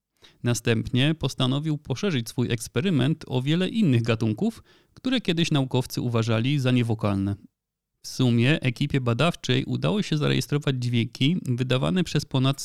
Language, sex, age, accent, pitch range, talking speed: Polish, male, 30-49, native, 120-150 Hz, 125 wpm